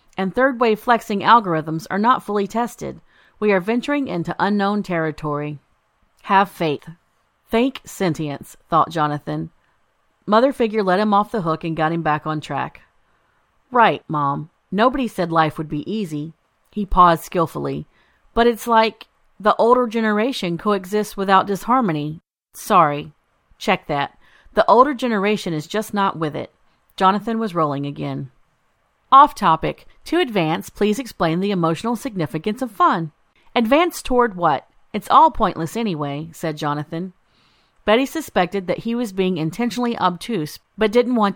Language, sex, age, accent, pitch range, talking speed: English, female, 40-59, American, 165-235 Hz, 145 wpm